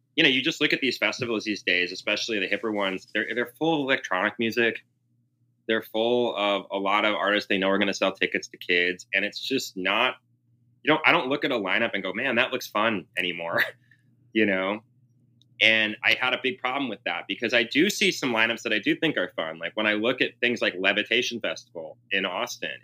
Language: English